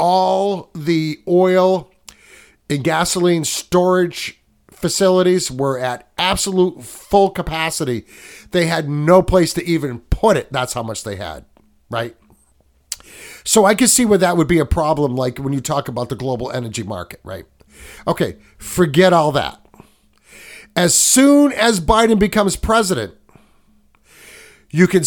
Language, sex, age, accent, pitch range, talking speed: English, male, 50-69, American, 135-185 Hz, 140 wpm